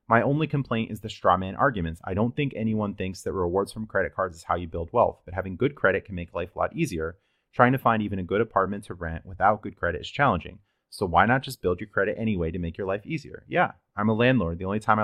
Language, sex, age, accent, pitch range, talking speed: English, male, 30-49, American, 90-110 Hz, 265 wpm